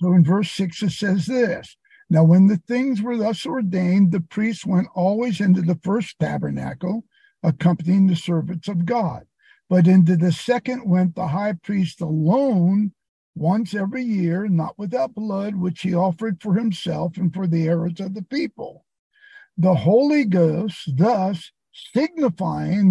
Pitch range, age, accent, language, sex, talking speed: 175-215 Hz, 60-79, American, English, male, 155 wpm